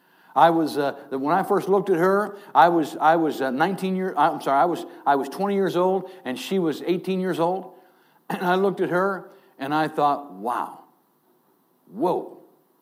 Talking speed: 190 wpm